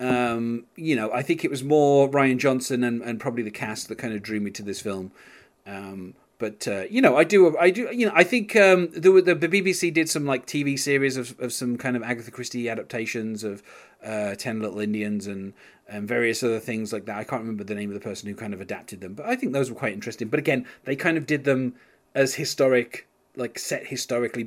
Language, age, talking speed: English, 30-49, 240 wpm